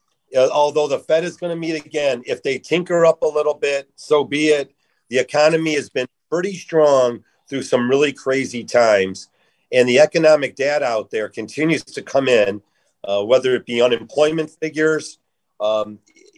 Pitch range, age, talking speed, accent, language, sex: 130-165 Hz, 40-59, 170 wpm, American, English, male